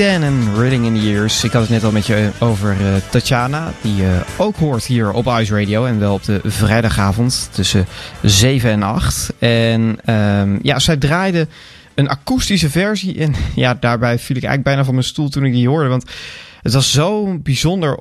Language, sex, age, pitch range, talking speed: Dutch, male, 20-39, 105-140 Hz, 200 wpm